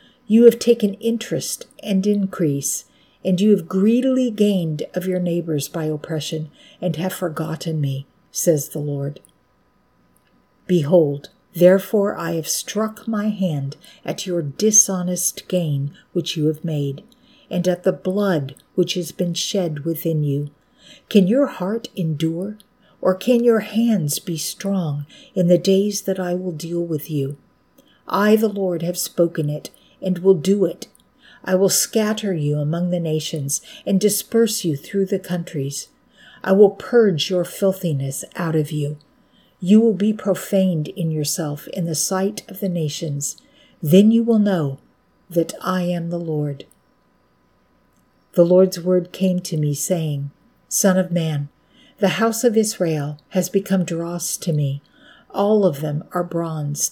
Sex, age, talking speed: female, 50-69, 150 wpm